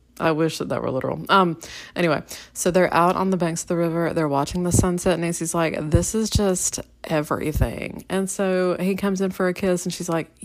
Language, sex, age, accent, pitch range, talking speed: English, female, 30-49, American, 155-195 Hz, 220 wpm